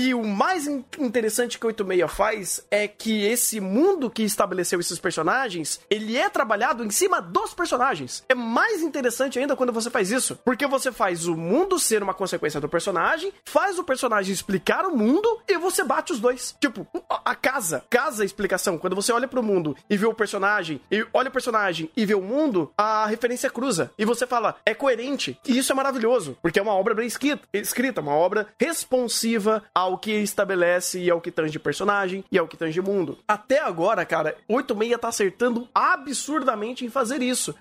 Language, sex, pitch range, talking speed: Portuguese, male, 185-255 Hz, 195 wpm